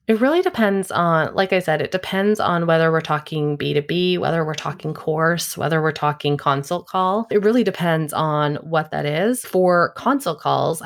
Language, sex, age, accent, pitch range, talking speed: English, female, 20-39, American, 150-185 Hz, 180 wpm